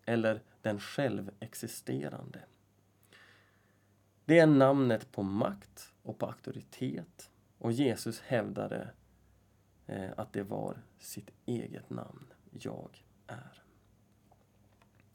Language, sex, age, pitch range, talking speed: Swedish, male, 30-49, 100-135 Hz, 85 wpm